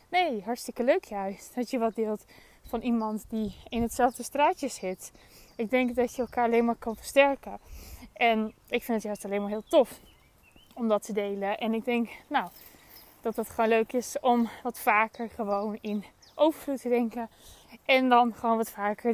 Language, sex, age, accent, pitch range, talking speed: Dutch, female, 20-39, Dutch, 215-255 Hz, 185 wpm